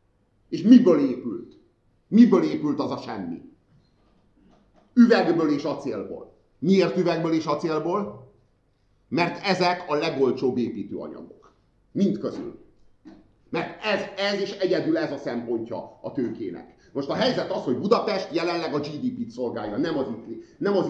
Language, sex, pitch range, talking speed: Hungarian, male, 125-180 Hz, 130 wpm